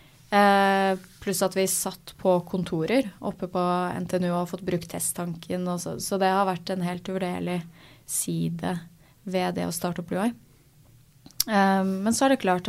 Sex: female